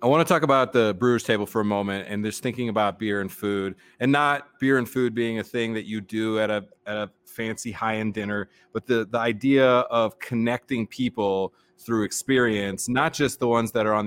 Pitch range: 105-125 Hz